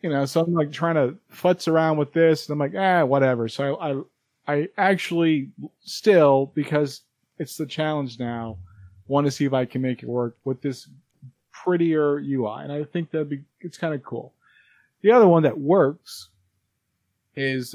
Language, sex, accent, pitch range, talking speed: English, male, American, 125-150 Hz, 185 wpm